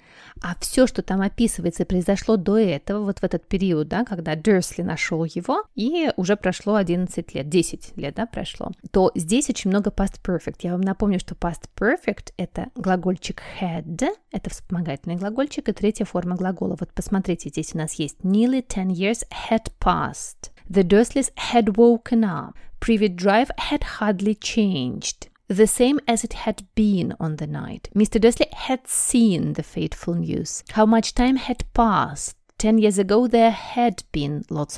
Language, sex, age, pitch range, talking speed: Russian, female, 30-49, 175-225 Hz, 170 wpm